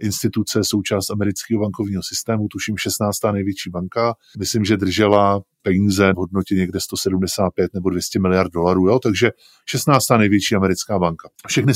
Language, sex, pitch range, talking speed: Czech, male, 95-110 Hz, 145 wpm